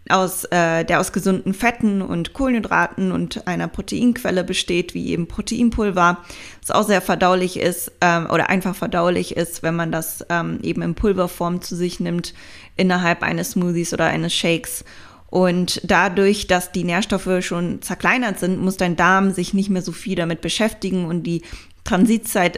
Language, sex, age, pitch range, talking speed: German, female, 20-39, 170-195 Hz, 165 wpm